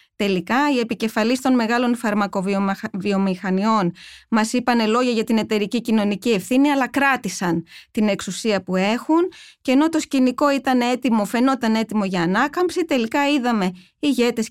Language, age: Greek, 20-39